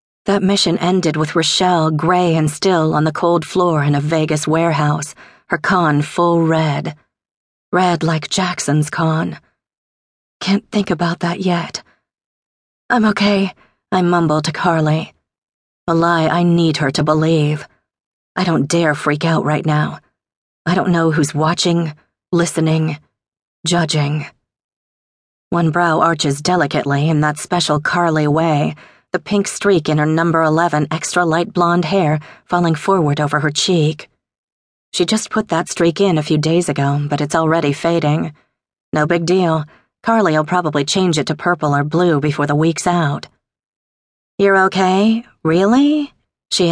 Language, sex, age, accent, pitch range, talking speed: English, female, 40-59, American, 150-175 Hz, 145 wpm